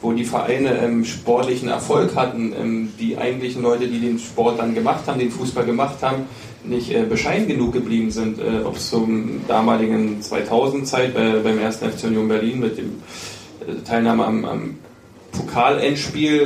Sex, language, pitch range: male, German, 115-130 Hz